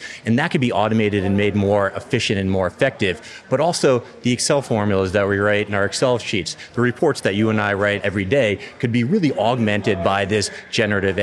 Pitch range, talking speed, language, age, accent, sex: 100-120 Hz, 215 wpm, English, 30-49, American, male